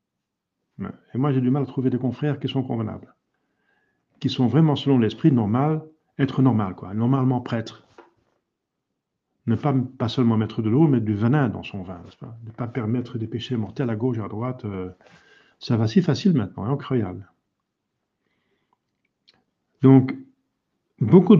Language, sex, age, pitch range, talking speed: French, male, 50-69, 110-155 Hz, 155 wpm